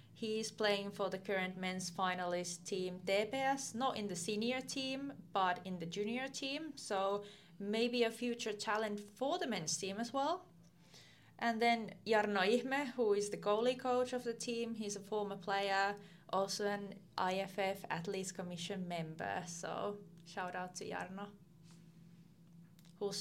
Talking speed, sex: 150 wpm, female